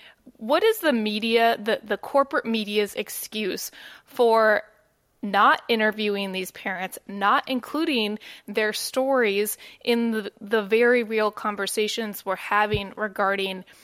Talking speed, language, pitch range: 115 wpm, English, 205-245 Hz